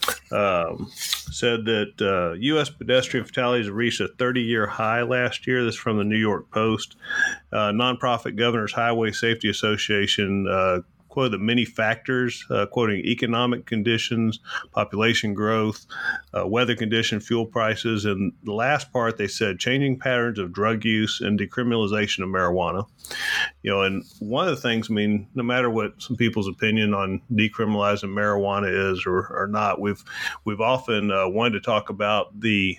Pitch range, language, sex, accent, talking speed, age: 100-120 Hz, English, male, American, 160 wpm, 40-59